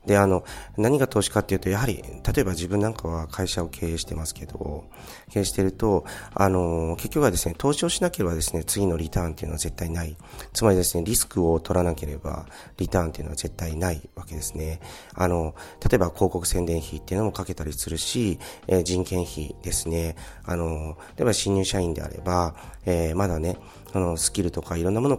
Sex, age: male, 40-59